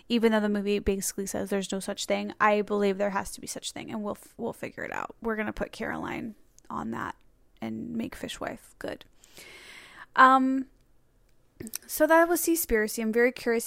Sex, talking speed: female, 190 wpm